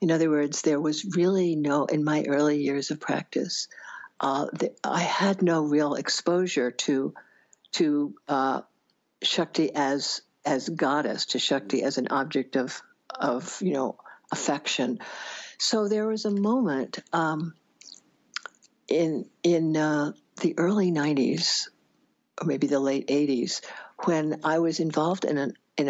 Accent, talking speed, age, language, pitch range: American, 140 wpm, 60-79, English, 140-175 Hz